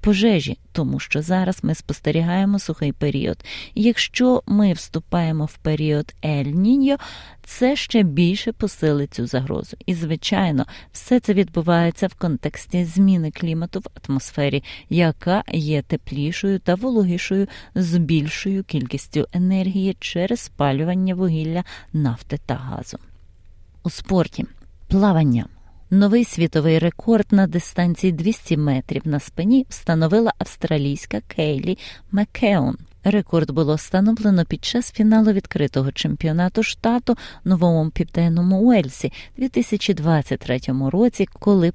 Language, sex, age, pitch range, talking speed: Ukrainian, female, 30-49, 150-200 Hz, 115 wpm